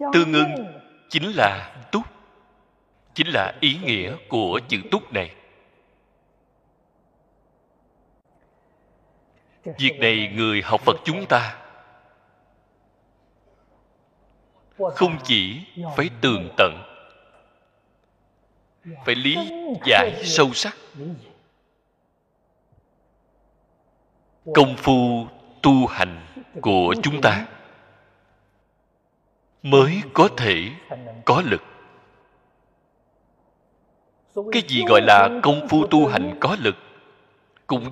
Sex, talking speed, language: male, 85 wpm, Vietnamese